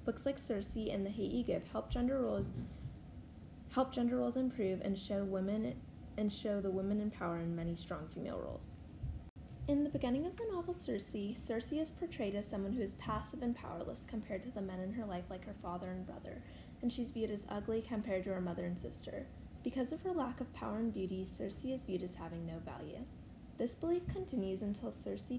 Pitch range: 190-255 Hz